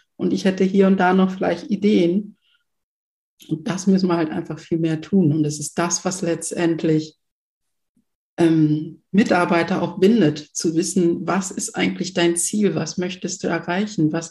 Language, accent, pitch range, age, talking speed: German, German, 175-210 Hz, 50-69, 170 wpm